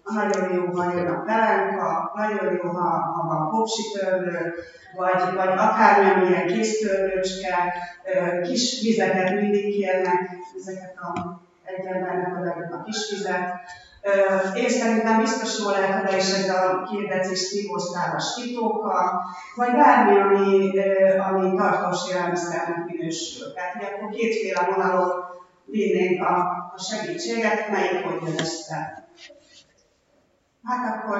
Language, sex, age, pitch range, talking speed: Hungarian, female, 30-49, 180-210 Hz, 120 wpm